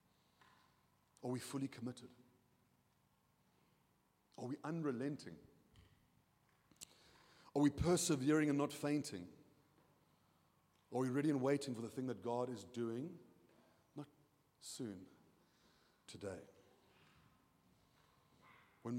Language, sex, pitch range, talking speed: English, male, 120-155 Hz, 90 wpm